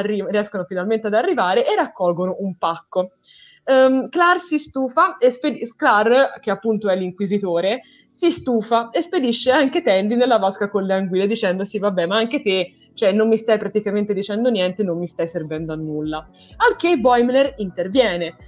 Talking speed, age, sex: 170 wpm, 20-39, female